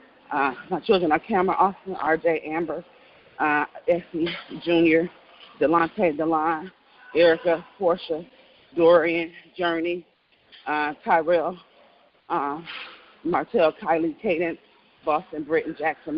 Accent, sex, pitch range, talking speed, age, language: American, female, 165-185 Hz, 95 wpm, 30-49, English